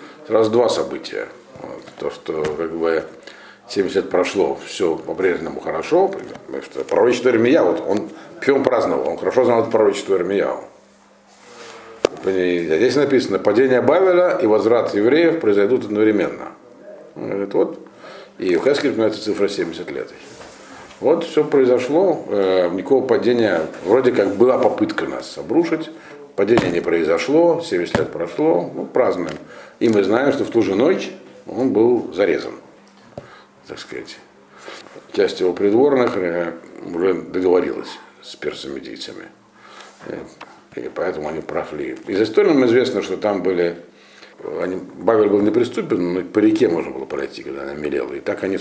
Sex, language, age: male, Russian, 50-69